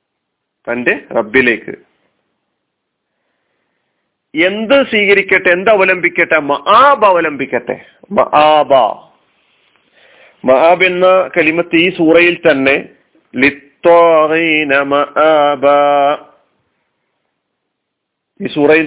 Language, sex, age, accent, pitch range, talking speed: Malayalam, male, 40-59, native, 145-180 Hz, 50 wpm